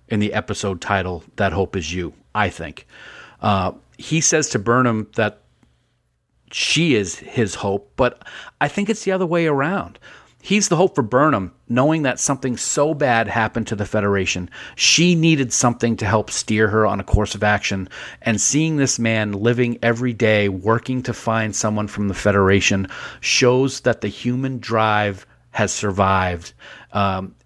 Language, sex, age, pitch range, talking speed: English, male, 40-59, 100-125 Hz, 165 wpm